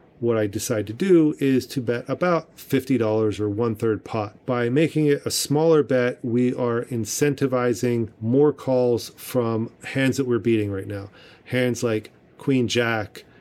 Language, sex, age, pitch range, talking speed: English, male, 40-59, 115-135 Hz, 155 wpm